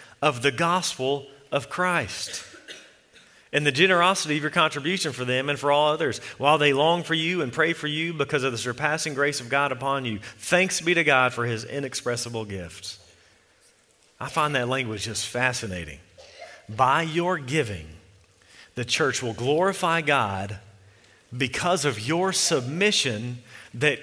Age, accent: 40-59, American